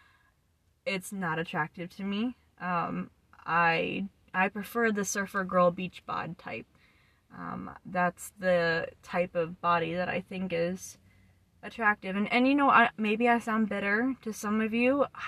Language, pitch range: English, 175-205 Hz